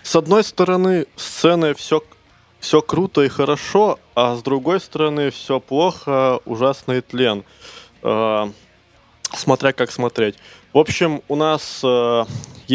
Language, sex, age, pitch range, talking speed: Russian, male, 20-39, 110-135 Hz, 120 wpm